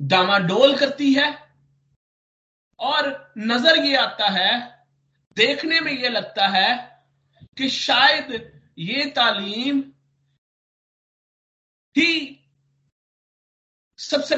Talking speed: 80 wpm